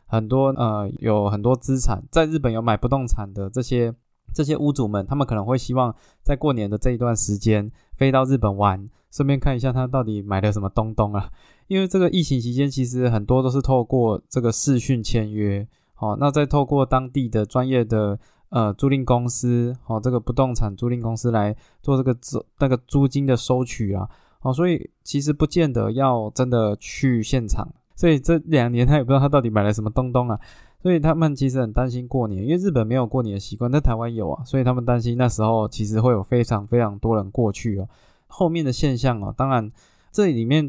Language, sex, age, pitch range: Chinese, male, 20-39, 110-140 Hz